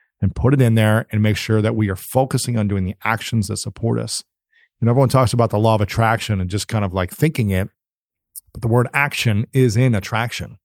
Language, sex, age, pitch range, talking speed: English, male, 40-59, 105-135 Hz, 230 wpm